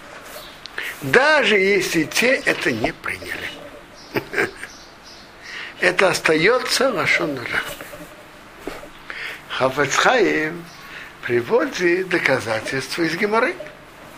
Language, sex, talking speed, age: Russian, male, 65 wpm, 60-79